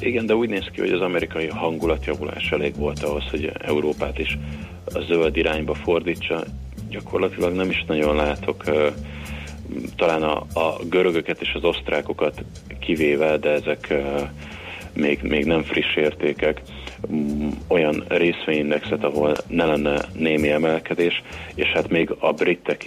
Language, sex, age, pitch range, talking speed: Hungarian, male, 30-49, 75-85 Hz, 130 wpm